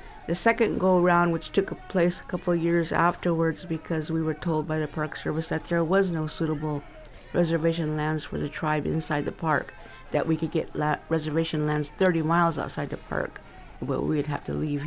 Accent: American